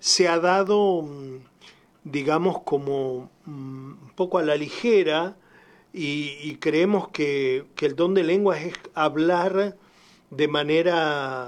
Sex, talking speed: male, 120 wpm